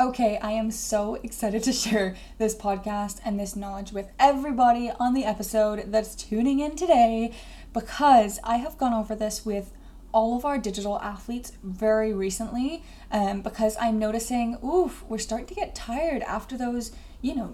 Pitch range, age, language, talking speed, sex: 205-250 Hz, 10-29, English, 170 wpm, female